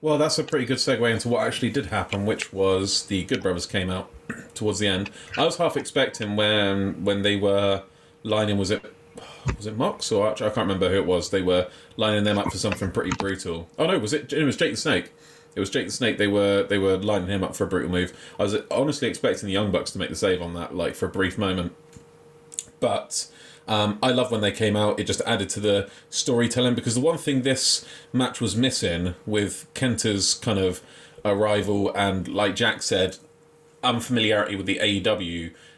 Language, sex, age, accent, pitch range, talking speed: English, male, 30-49, British, 95-120 Hz, 220 wpm